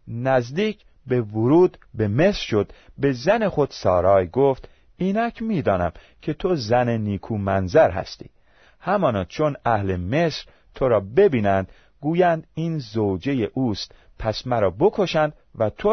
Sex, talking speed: male, 130 wpm